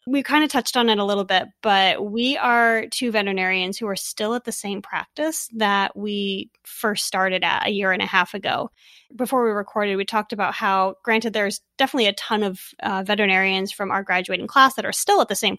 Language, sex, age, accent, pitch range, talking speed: English, female, 20-39, American, 195-235 Hz, 220 wpm